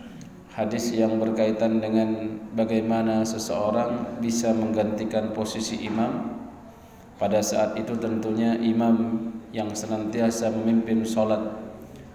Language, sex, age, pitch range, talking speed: Indonesian, male, 20-39, 110-115 Hz, 95 wpm